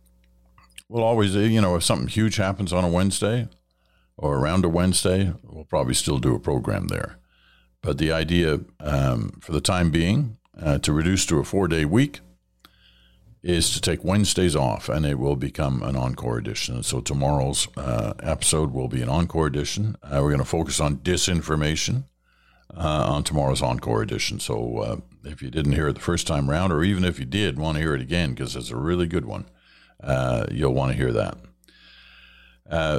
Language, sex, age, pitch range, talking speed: English, male, 60-79, 65-90 Hz, 190 wpm